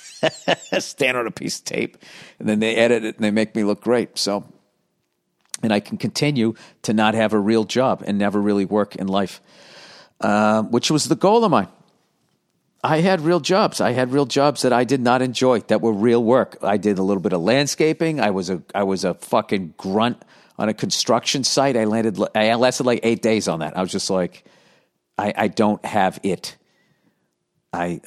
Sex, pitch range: male, 95-120 Hz